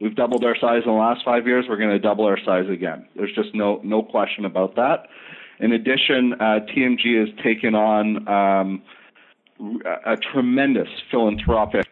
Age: 40-59